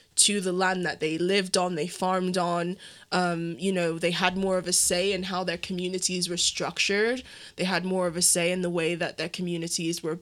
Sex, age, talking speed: female, 10-29, 225 wpm